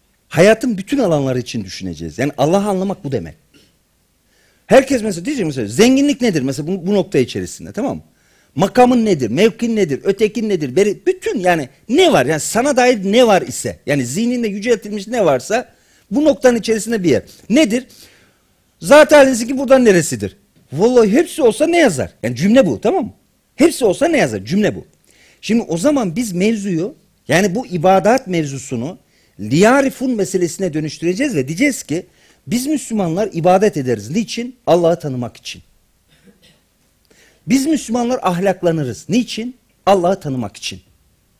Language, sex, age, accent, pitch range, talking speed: Turkish, male, 50-69, native, 155-245 Hz, 145 wpm